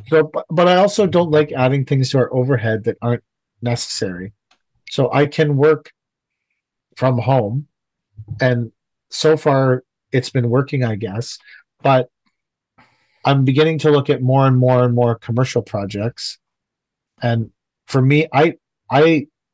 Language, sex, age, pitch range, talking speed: English, male, 40-59, 120-145 Hz, 140 wpm